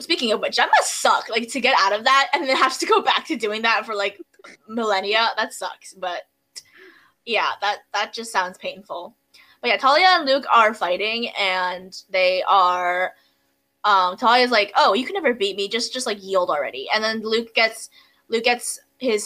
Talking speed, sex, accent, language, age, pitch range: 200 wpm, female, American, English, 10-29, 190-255 Hz